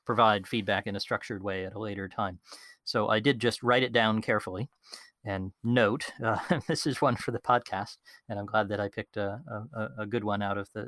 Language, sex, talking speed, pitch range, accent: English, male, 220 wpm, 105-125 Hz, American